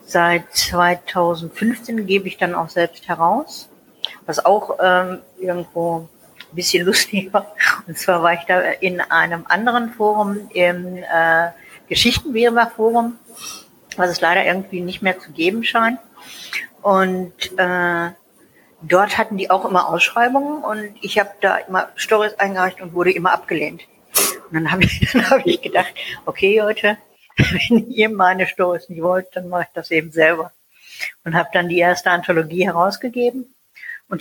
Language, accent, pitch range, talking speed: German, German, 175-215 Hz, 150 wpm